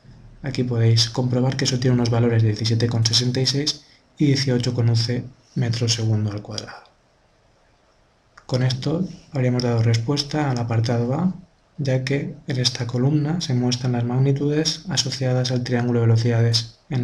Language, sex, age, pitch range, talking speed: Spanish, male, 20-39, 115-135 Hz, 135 wpm